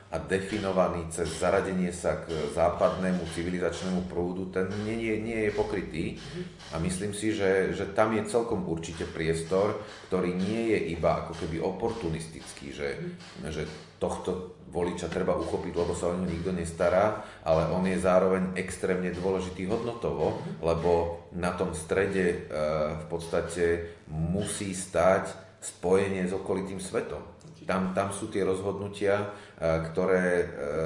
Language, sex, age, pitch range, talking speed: Slovak, male, 30-49, 80-95 Hz, 130 wpm